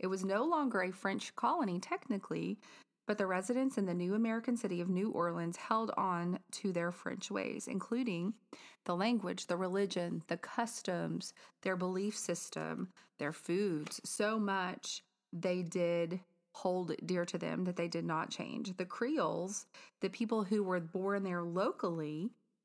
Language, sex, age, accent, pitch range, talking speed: English, female, 30-49, American, 175-225 Hz, 155 wpm